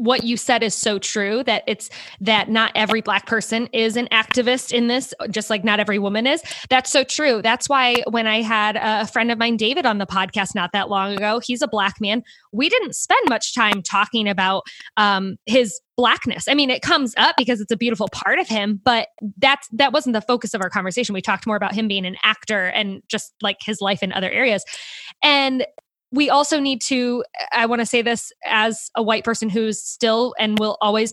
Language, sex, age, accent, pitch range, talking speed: English, female, 20-39, American, 210-250 Hz, 220 wpm